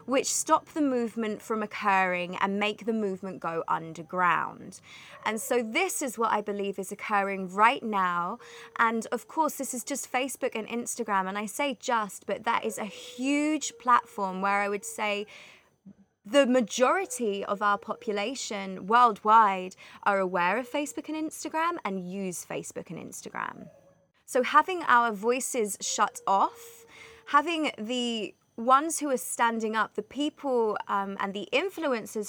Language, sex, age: English, female, 20-39